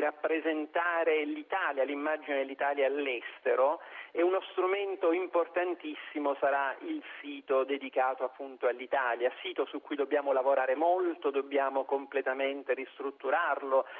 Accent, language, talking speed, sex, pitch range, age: native, Italian, 105 wpm, male, 140-185 Hz, 40-59